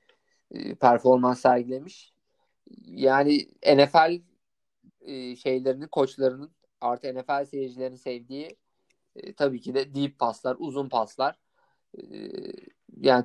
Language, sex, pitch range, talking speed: Turkish, male, 130-175 Hz, 80 wpm